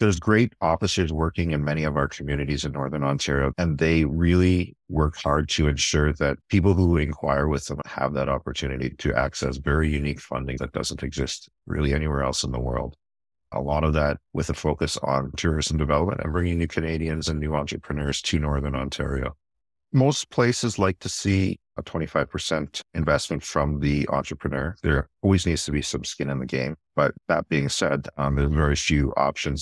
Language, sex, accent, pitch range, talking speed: English, male, American, 70-80 Hz, 185 wpm